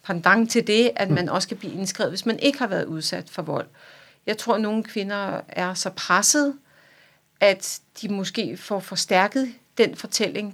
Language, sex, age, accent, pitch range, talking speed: Danish, female, 40-59, native, 175-210 Hz, 180 wpm